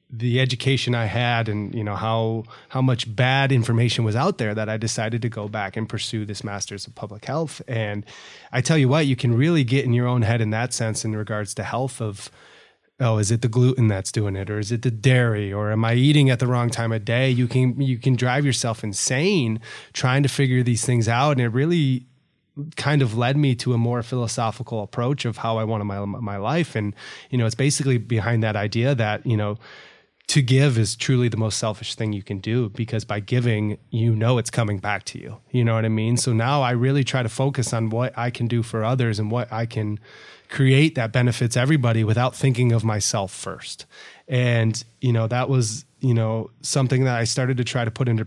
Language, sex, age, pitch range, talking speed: English, male, 20-39, 110-130 Hz, 230 wpm